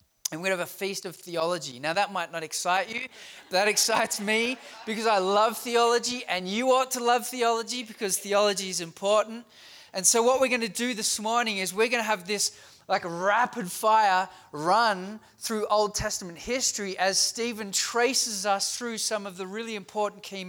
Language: English